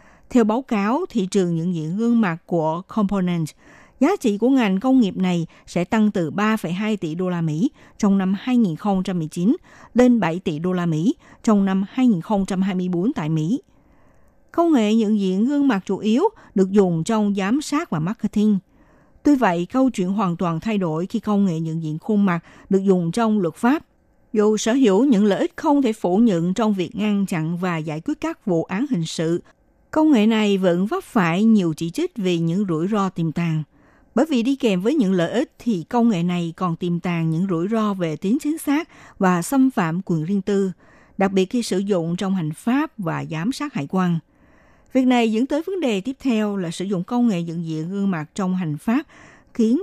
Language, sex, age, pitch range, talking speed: Vietnamese, female, 60-79, 170-230 Hz, 210 wpm